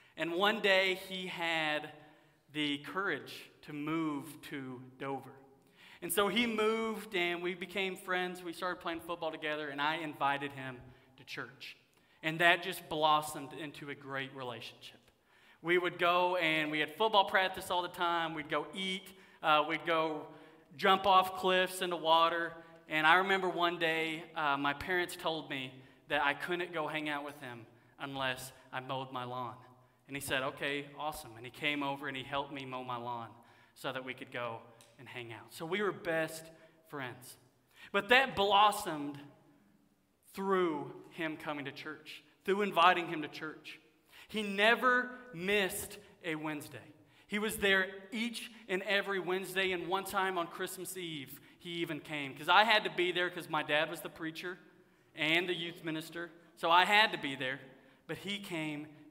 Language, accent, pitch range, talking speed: English, American, 140-180 Hz, 175 wpm